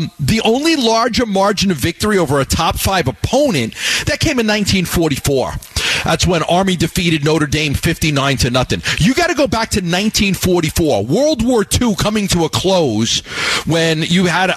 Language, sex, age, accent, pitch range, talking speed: English, male, 40-59, American, 135-185 Hz, 170 wpm